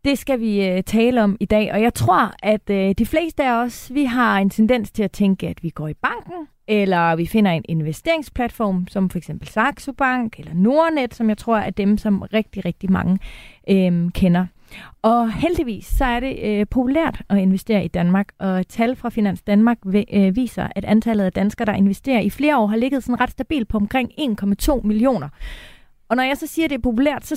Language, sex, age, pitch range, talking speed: Danish, female, 30-49, 195-255 Hz, 200 wpm